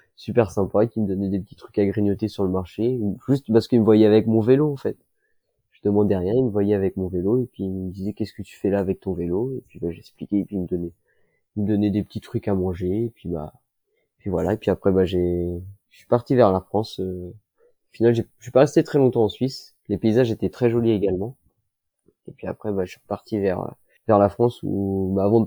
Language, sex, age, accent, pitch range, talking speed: French, male, 20-39, French, 95-120 Hz, 260 wpm